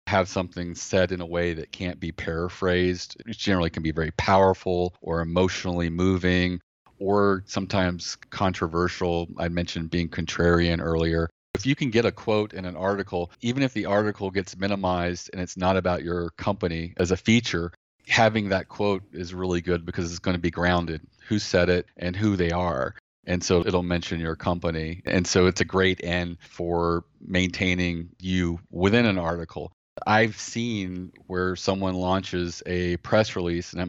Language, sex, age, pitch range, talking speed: English, male, 40-59, 85-100 Hz, 175 wpm